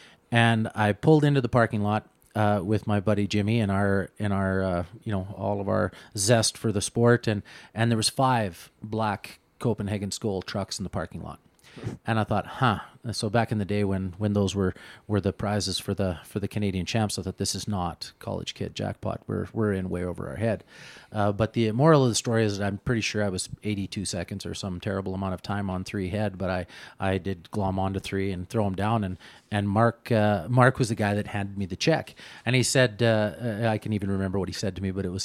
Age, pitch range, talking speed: 30-49, 95-110 Hz, 240 wpm